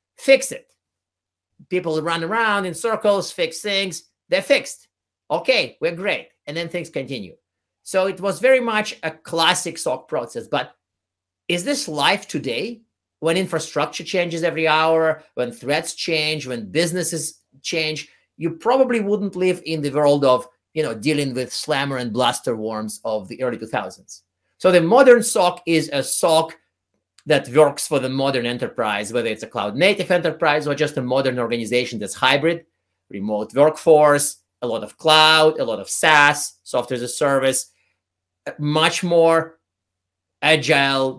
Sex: male